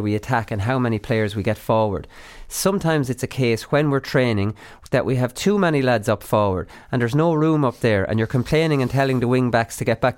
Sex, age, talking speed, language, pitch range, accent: male, 30-49, 240 wpm, English, 115-145 Hz, Irish